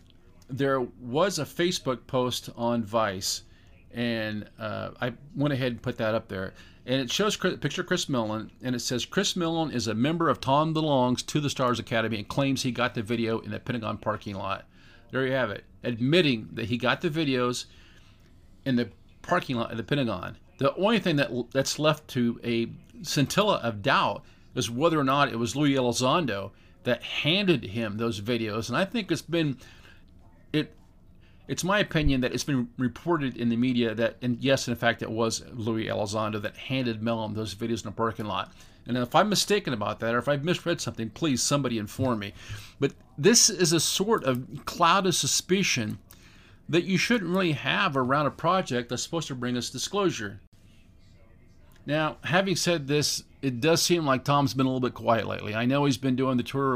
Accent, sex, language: American, male, English